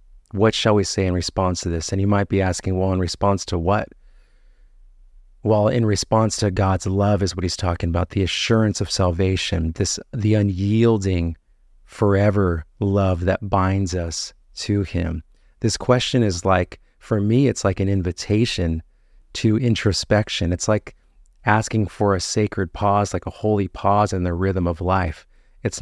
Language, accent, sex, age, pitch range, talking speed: English, American, male, 30-49, 85-105 Hz, 165 wpm